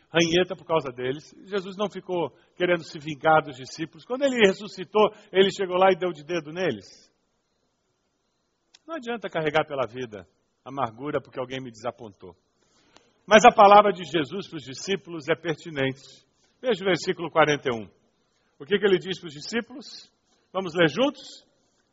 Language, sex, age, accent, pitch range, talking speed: Portuguese, male, 50-69, Brazilian, 160-225 Hz, 155 wpm